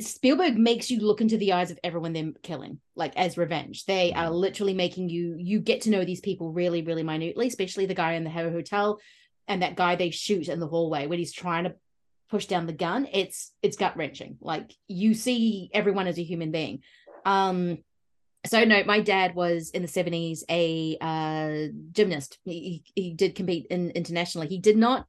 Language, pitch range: English, 170-200 Hz